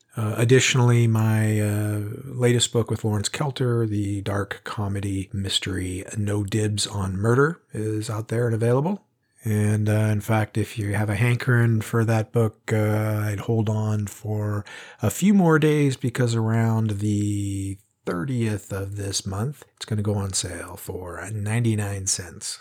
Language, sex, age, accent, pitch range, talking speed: English, male, 40-59, American, 100-115 Hz, 155 wpm